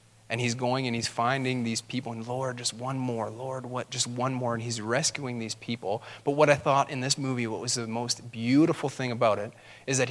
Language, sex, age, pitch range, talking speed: English, male, 30-49, 115-140 Hz, 240 wpm